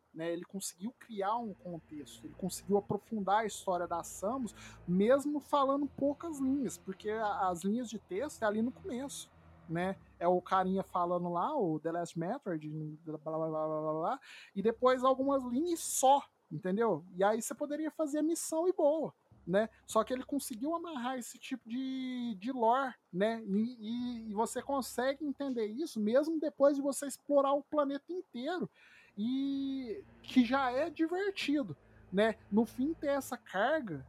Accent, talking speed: Brazilian, 165 wpm